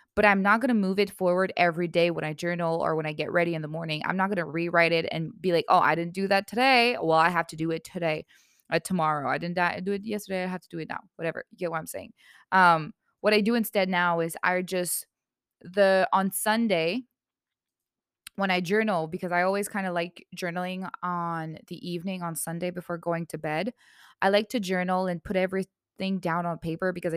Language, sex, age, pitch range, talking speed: English, female, 20-39, 165-195 Hz, 230 wpm